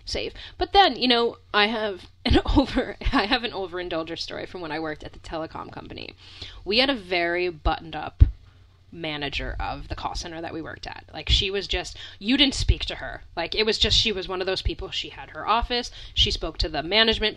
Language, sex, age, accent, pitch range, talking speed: English, female, 10-29, American, 160-220 Hz, 225 wpm